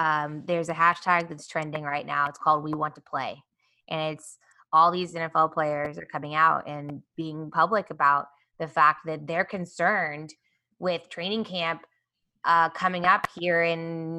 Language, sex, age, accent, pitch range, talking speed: English, female, 20-39, American, 170-220 Hz, 170 wpm